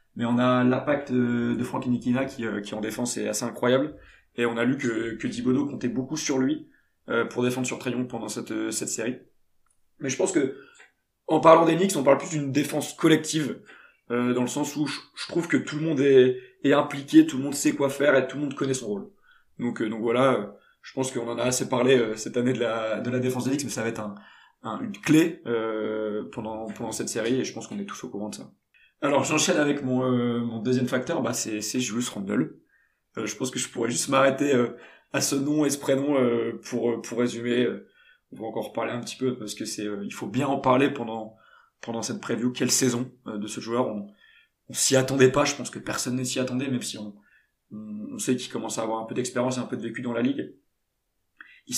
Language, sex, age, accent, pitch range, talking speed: French, male, 20-39, French, 115-140 Hz, 235 wpm